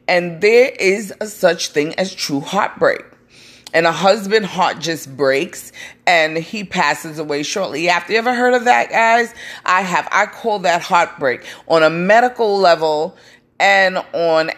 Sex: female